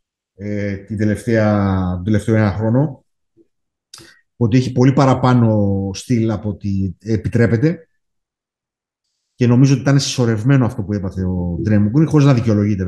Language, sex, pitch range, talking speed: Greek, male, 110-140 Hz, 130 wpm